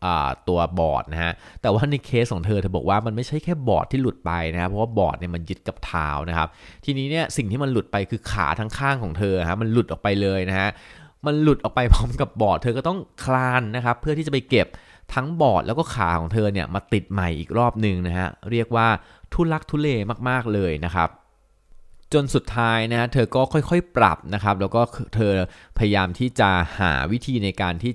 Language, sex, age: Thai, male, 20-39